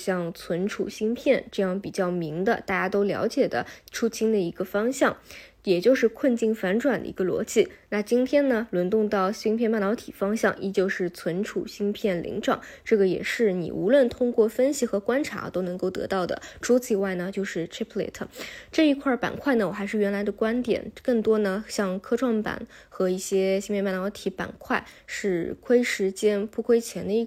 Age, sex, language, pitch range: 20-39, female, Chinese, 190-230 Hz